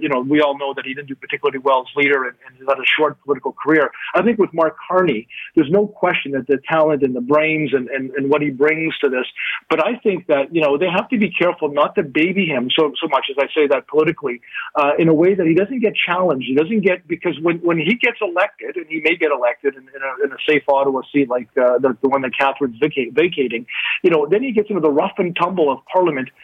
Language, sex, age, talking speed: English, male, 40-59, 265 wpm